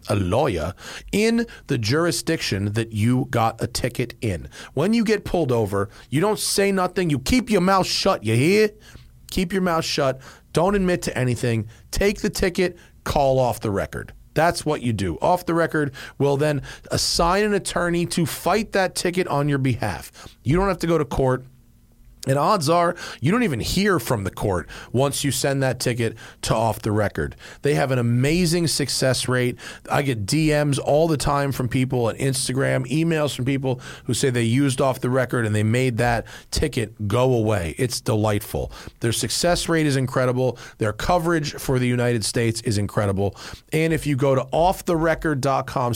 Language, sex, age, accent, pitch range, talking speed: English, male, 40-59, American, 120-165 Hz, 185 wpm